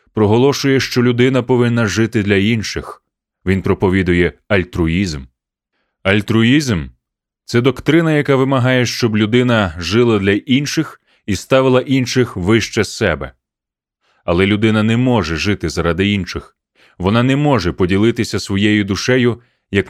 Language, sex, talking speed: Ukrainian, male, 120 wpm